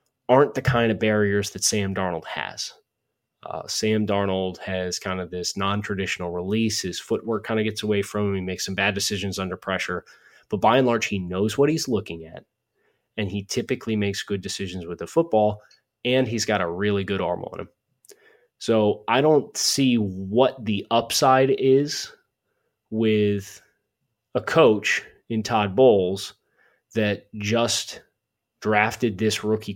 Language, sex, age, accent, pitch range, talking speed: English, male, 20-39, American, 100-115 Hz, 160 wpm